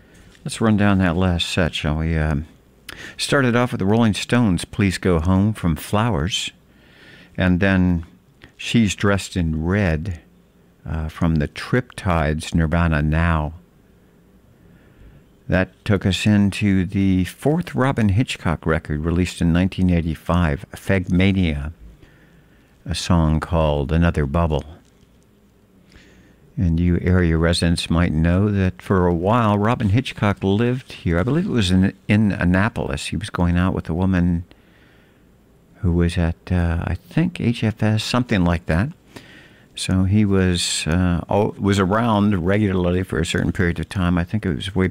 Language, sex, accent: English, male, American